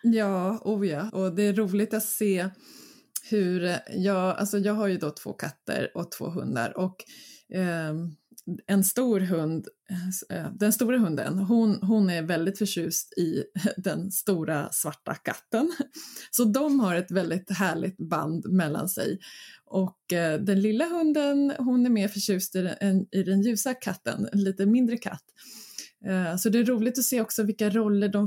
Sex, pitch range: female, 185-225 Hz